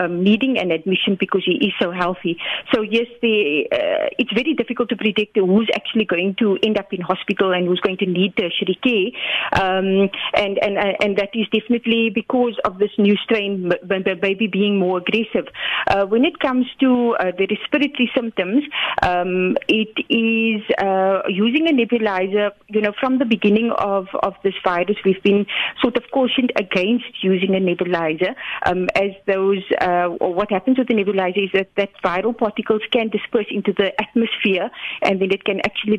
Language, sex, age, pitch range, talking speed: English, female, 30-49, 190-235 Hz, 180 wpm